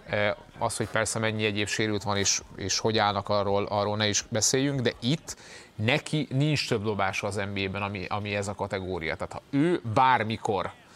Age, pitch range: 30-49, 105-125 Hz